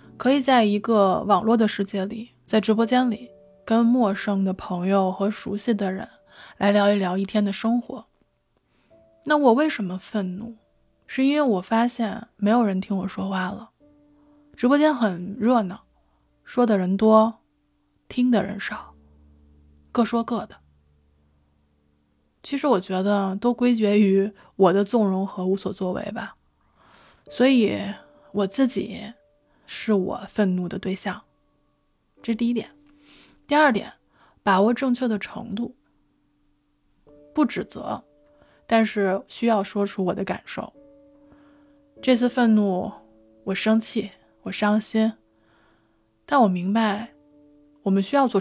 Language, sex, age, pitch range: Chinese, female, 20-39, 185-230 Hz